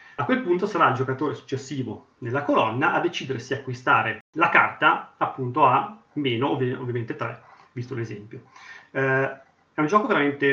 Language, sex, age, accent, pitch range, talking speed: Italian, male, 30-49, native, 125-150 Hz, 160 wpm